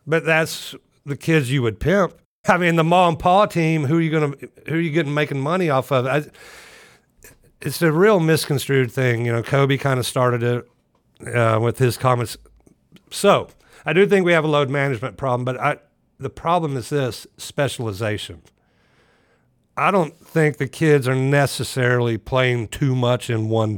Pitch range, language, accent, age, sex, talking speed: 115-145 Hz, English, American, 60-79, male, 180 wpm